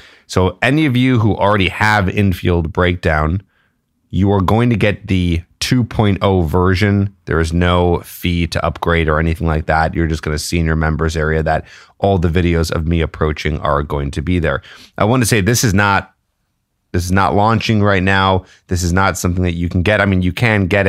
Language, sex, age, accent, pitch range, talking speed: English, male, 30-49, American, 80-100 Hz, 210 wpm